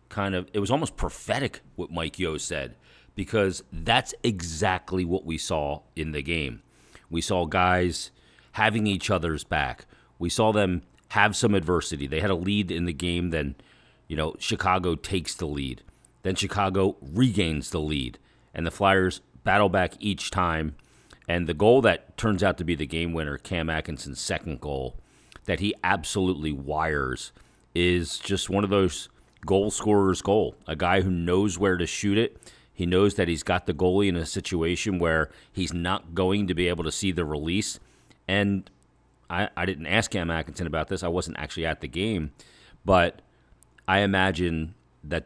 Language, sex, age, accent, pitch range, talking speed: English, male, 40-59, American, 80-95 Hz, 175 wpm